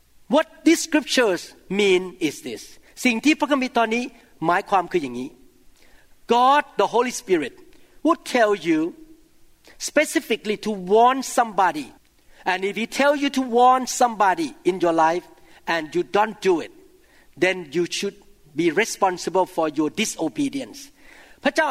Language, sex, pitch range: Thai, male, 195-270 Hz